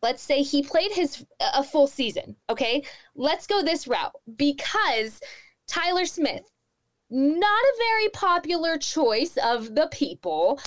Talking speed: 135 wpm